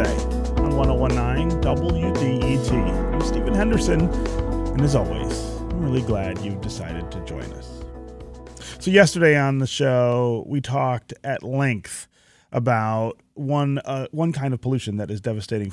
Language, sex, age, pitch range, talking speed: English, male, 30-49, 100-125 Hz, 140 wpm